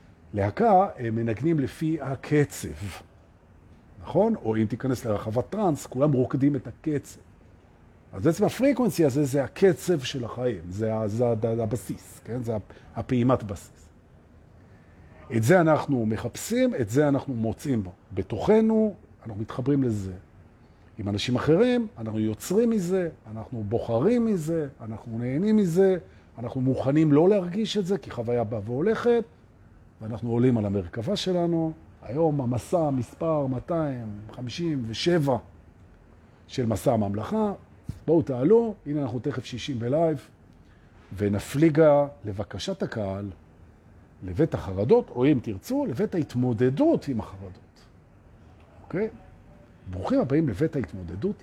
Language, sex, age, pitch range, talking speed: Hebrew, male, 50-69, 105-155 Hz, 105 wpm